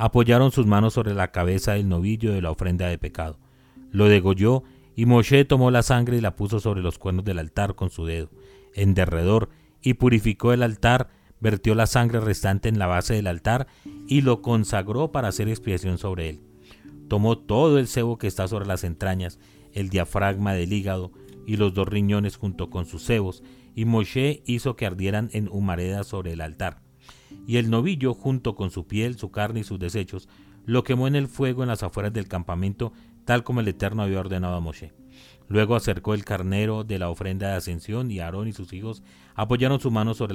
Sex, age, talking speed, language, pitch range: male, 40-59, 200 wpm, Spanish, 95-120 Hz